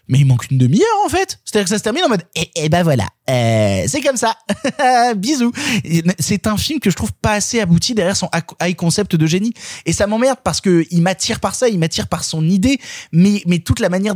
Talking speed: 235 wpm